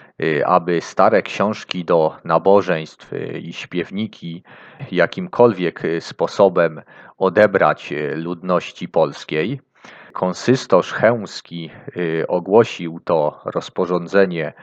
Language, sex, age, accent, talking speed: Polish, male, 40-59, native, 70 wpm